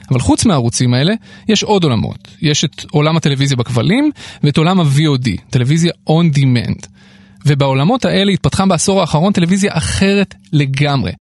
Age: 30-49